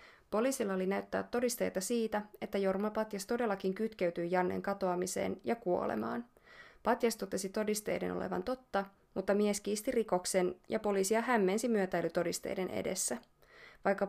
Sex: female